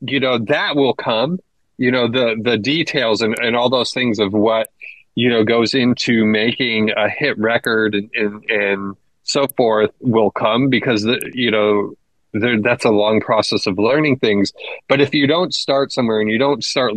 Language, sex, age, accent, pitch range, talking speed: English, male, 30-49, American, 105-125 Hz, 185 wpm